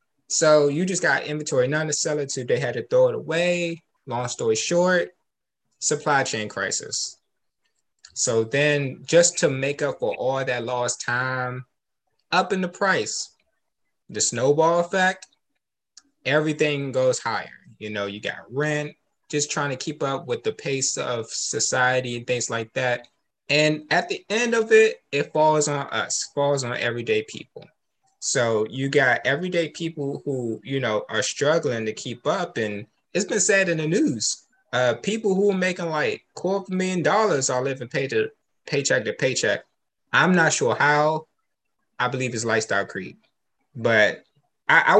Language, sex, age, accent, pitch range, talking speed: English, male, 20-39, American, 125-185 Hz, 165 wpm